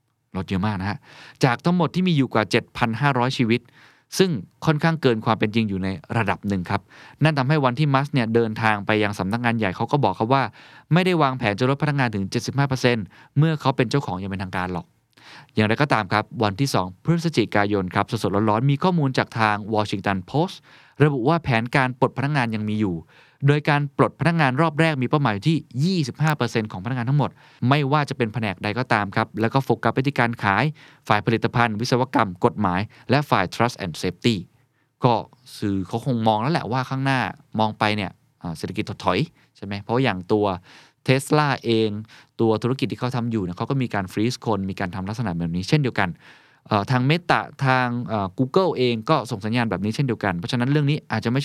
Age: 20-39